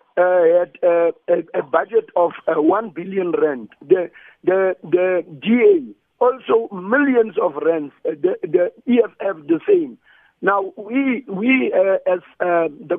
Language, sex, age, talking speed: English, male, 50-69, 150 wpm